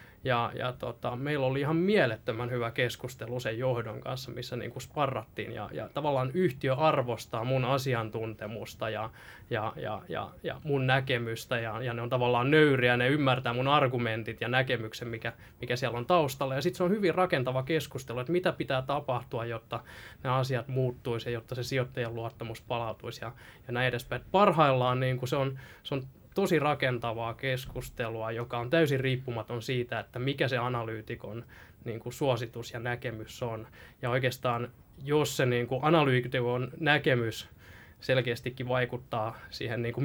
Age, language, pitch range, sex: 20-39, Finnish, 115-135 Hz, male